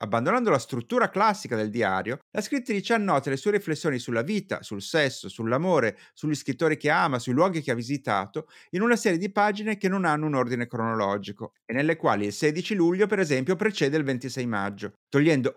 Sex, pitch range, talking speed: male, 125-175 Hz, 195 wpm